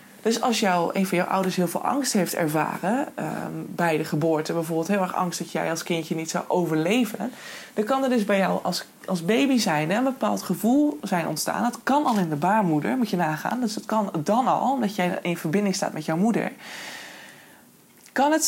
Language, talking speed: Dutch, 215 wpm